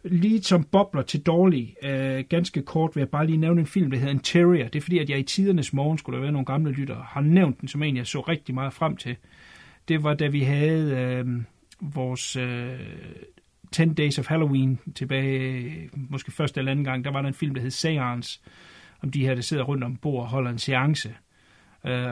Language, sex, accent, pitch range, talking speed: Danish, male, native, 130-160 Hz, 225 wpm